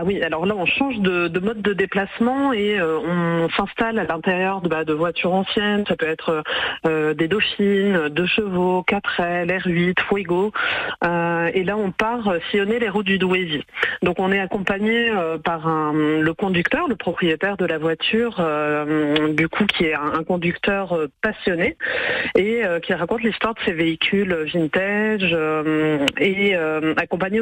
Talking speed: 175 wpm